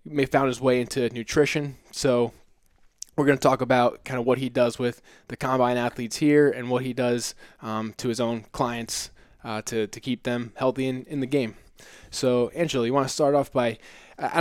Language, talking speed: English, 210 wpm